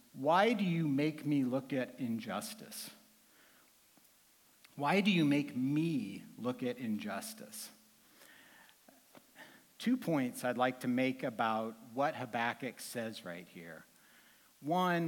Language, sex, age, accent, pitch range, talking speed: English, male, 60-79, American, 130-205 Hz, 115 wpm